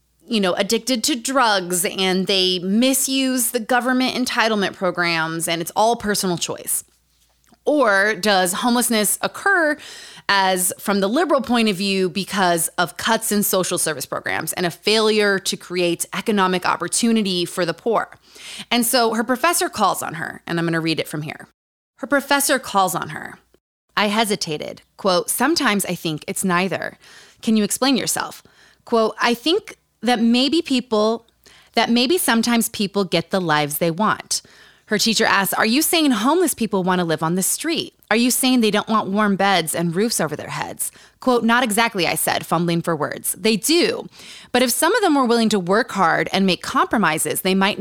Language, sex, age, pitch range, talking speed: English, female, 20-39, 180-245 Hz, 180 wpm